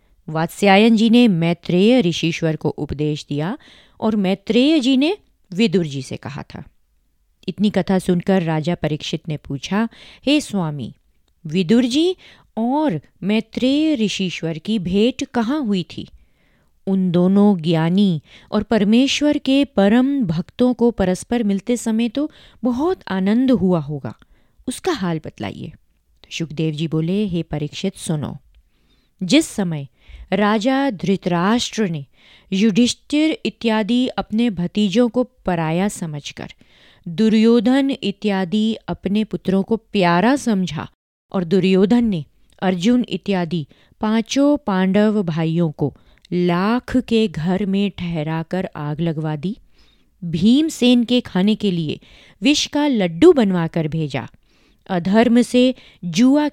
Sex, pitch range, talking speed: female, 170-235 Hz, 125 wpm